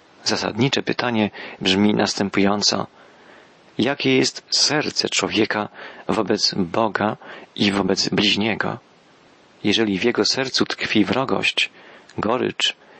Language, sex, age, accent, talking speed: Polish, male, 40-59, native, 90 wpm